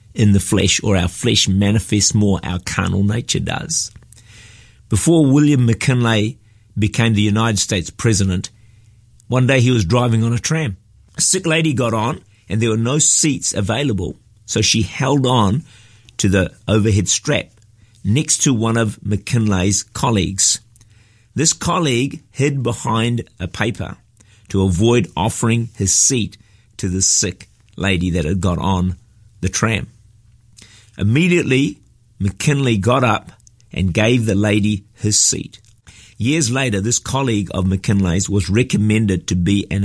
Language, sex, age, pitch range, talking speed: English, male, 50-69, 100-120 Hz, 145 wpm